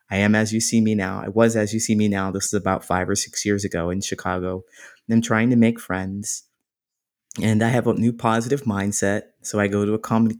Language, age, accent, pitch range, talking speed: English, 30-49, American, 100-125 Hz, 245 wpm